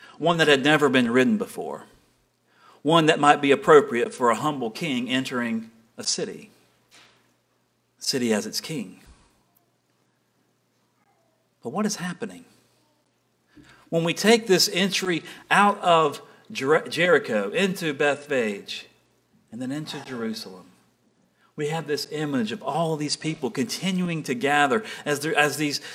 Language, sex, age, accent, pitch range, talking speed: English, male, 40-59, American, 145-200 Hz, 130 wpm